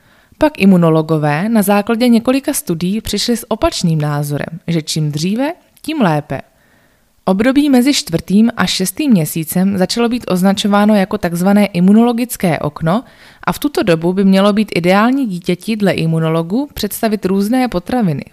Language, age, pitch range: Czech, 20-39, 175-230 Hz